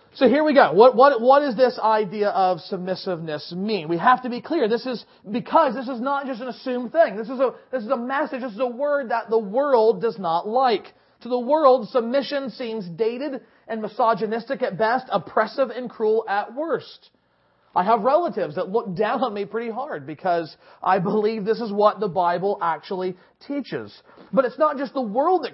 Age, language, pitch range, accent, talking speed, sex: 40-59, English, 215-265 Hz, American, 205 wpm, male